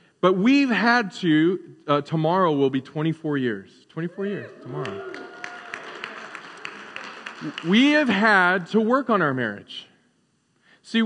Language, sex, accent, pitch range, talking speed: English, male, American, 150-215 Hz, 120 wpm